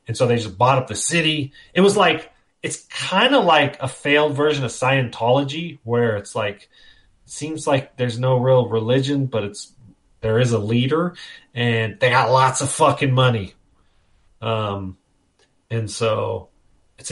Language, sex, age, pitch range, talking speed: English, male, 30-49, 105-135 Hz, 160 wpm